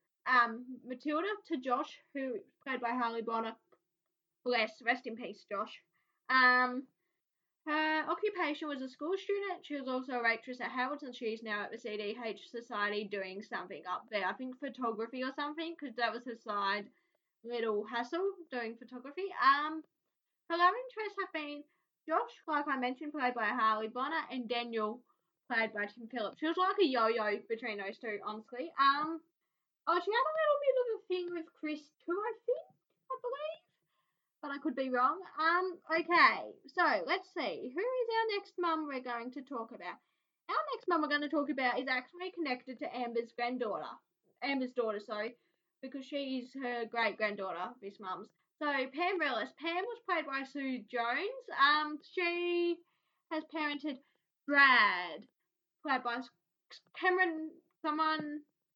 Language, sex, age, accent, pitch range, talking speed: English, female, 10-29, Australian, 235-335 Hz, 160 wpm